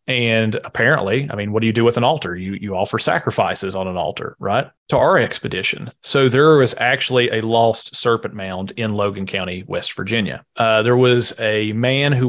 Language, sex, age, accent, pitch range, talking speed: English, male, 30-49, American, 100-120 Hz, 200 wpm